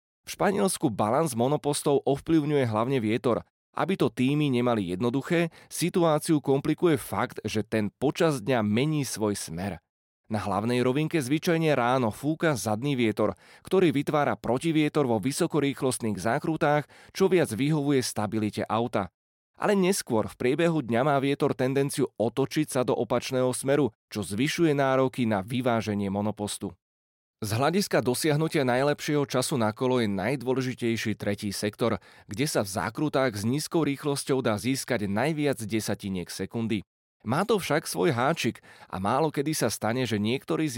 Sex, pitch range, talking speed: male, 110-145 Hz, 140 wpm